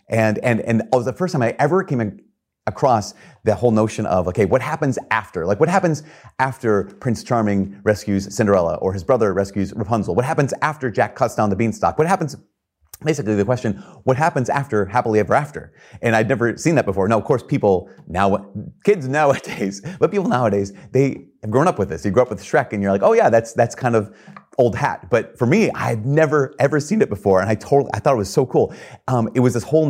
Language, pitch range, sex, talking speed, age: English, 100-130 Hz, male, 230 wpm, 30-49